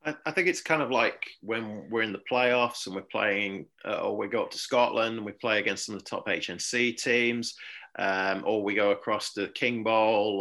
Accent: British